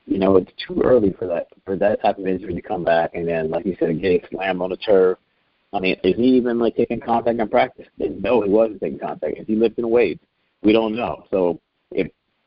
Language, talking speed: English, 235 wpm